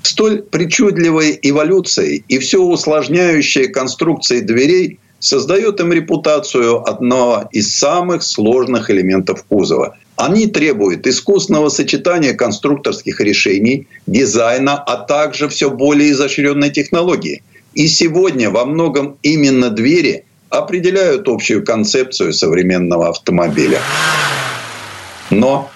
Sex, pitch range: male, 130-185 Hz